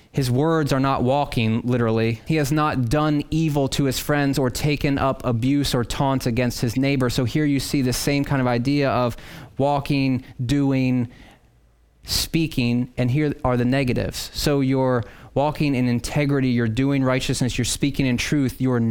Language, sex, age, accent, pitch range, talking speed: English, male, 30-49, American, 125-145 Hz, 170 wpm